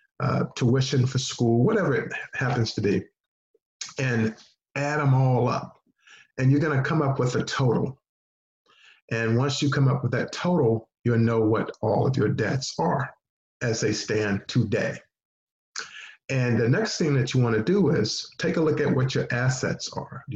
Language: English